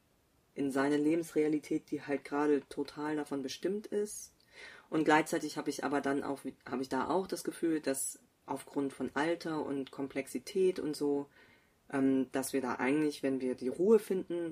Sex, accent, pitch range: female, German, 125-145 Hz